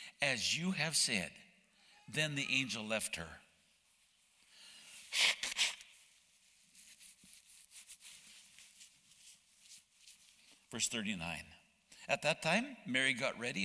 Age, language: 60-79, English